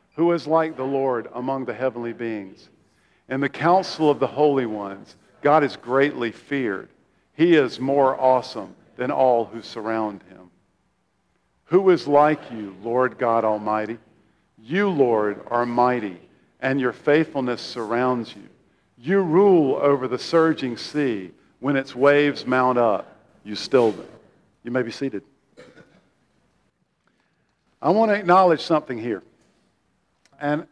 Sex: male